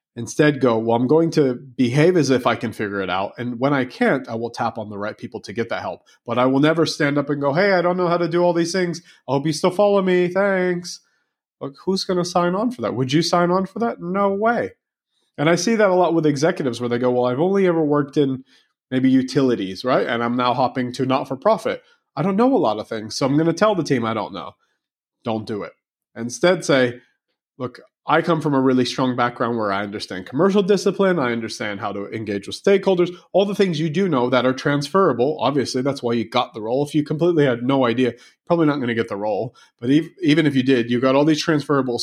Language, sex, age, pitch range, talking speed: English, male, 30-49, 120-175 Hz, 255 wpm